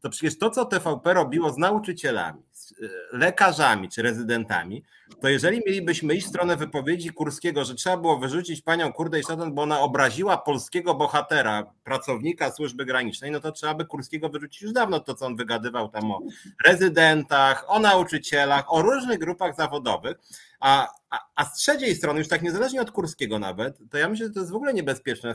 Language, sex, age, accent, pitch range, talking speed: Polish, male, 30-49, native, 145-220 Hz, 180 wpm